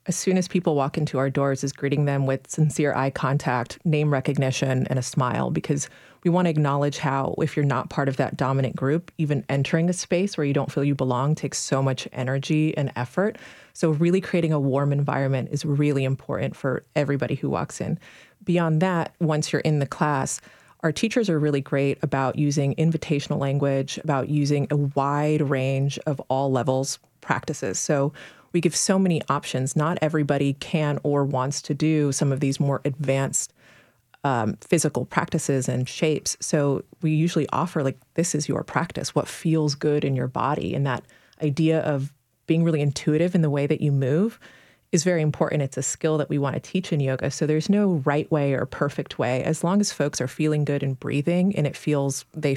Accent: American